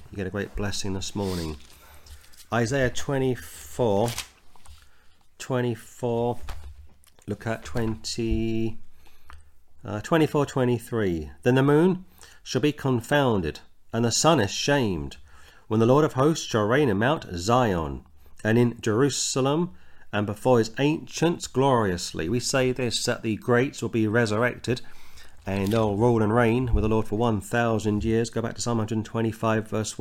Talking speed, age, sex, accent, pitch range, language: 145 wpm, 40-59, male, British, 95-125 Hz, English